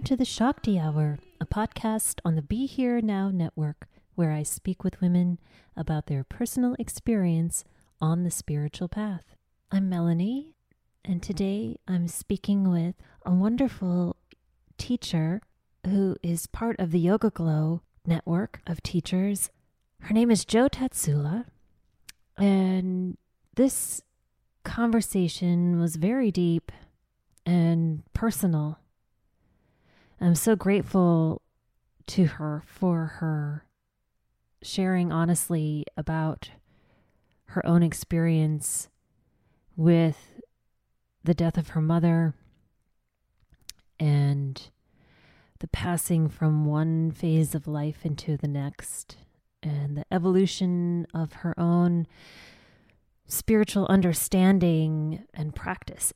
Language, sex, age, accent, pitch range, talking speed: English, female, 30-49, American, 155-195 Hz, 105 wpm